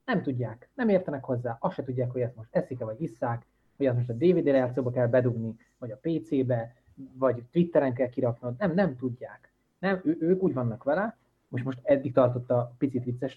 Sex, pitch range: male, 120-140 Hz